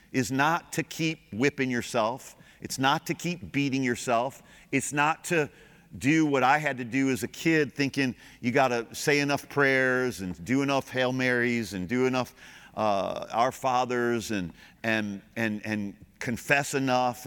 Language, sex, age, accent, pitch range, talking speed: English, male, 50-69, American, 110-145 Hz, 165 wpm